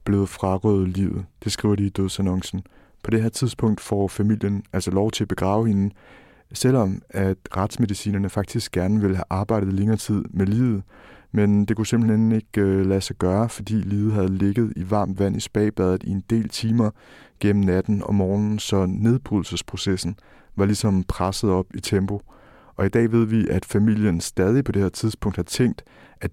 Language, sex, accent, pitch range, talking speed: Danish, male, native, 95-110 Hz, 180 wpm